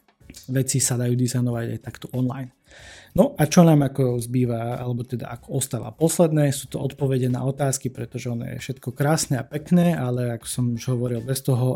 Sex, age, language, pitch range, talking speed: male, 20-39, Slovak, 125-145 Hz, 190 wpm